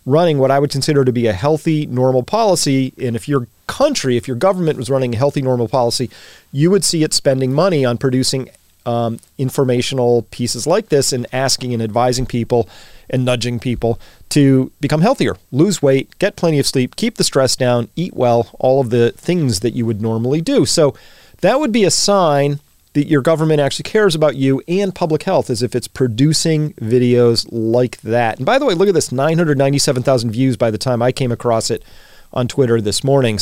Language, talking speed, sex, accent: English, 200 wpm, male, American